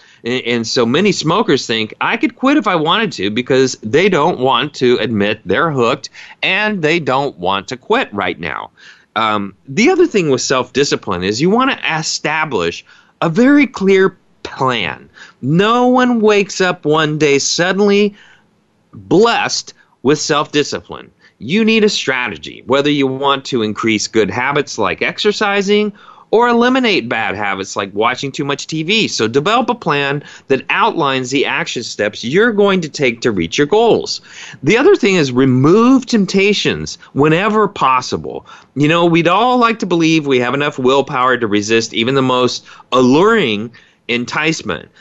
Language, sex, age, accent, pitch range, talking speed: English, male, 30-49, American, 130-205 Hz, 160 wpm